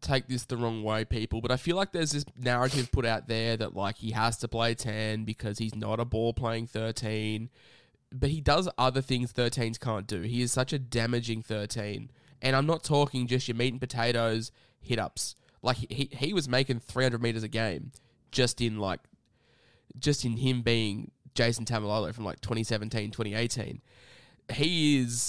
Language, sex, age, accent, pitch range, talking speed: English, male, 10-29, Australian, 110-130 Hz, 180 wpm